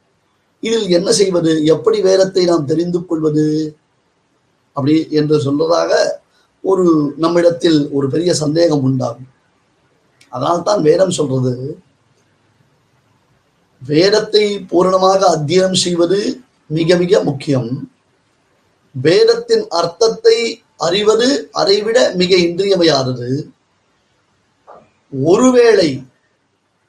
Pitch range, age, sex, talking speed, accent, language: 150-205 Hz, 30-49, male, 75 wpm, native, Tamil